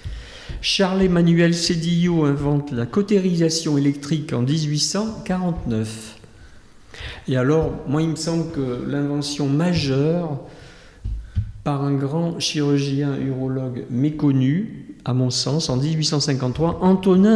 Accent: French